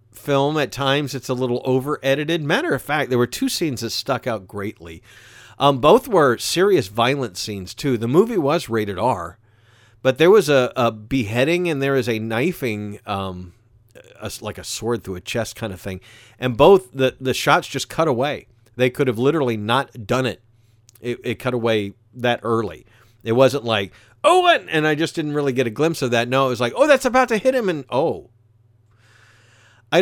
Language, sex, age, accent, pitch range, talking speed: English, male, 50-69, American, 110-130 Hz, 205 wpm